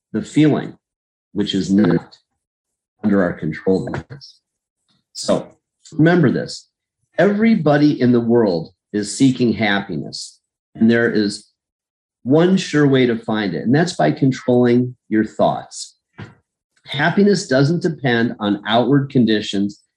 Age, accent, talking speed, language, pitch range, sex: 40-59, American, 115 wpm, English, 115-150 Hz, male